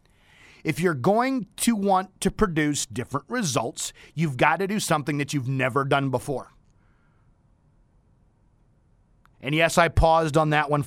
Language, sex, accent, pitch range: English, male, American, 165-270 Hz